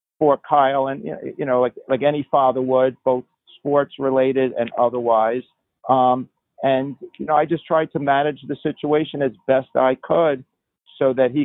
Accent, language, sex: American, English, male